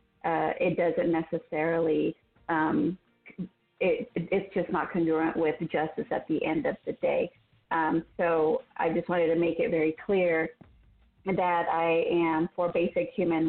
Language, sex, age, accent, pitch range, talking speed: English, female, 40-59, American, 160-180 Hz, 150 wpm